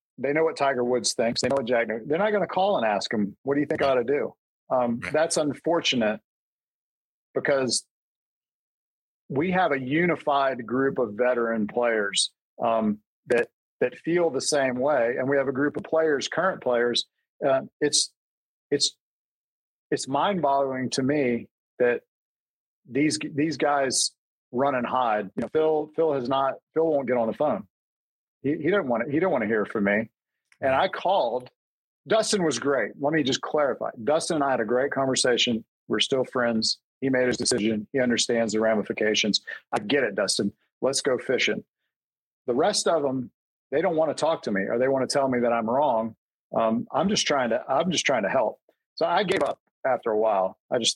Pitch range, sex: 115-145 Hz, male